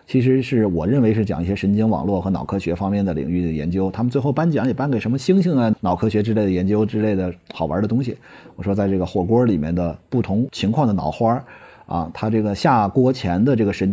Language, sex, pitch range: Chinese, male, 100-130 Hz